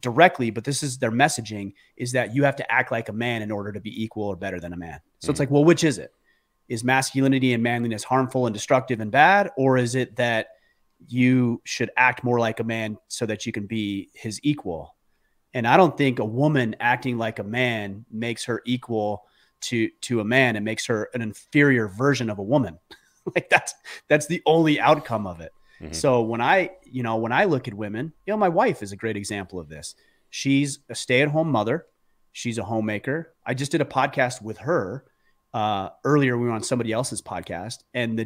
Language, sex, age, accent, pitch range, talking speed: English, male, 30-49, American, 110-140 Hz, 215 wpm